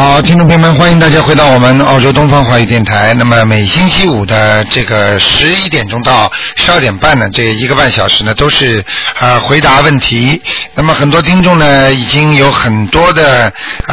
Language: Chinese